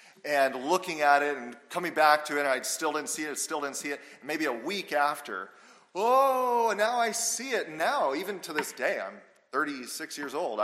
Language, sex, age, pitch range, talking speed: English, male, 40-59, 130-195 Hz, 205 wpm